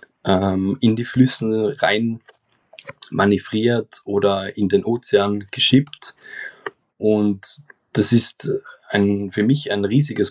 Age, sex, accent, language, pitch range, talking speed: 20-39, male, German, German, 100-130 Hz, 100 wpm